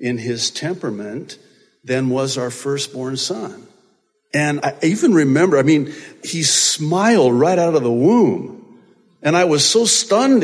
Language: English